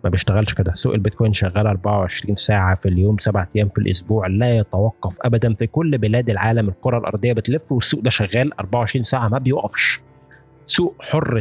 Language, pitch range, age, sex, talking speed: Arabic, 105-145 Hz, 20-39, male, 175 wpm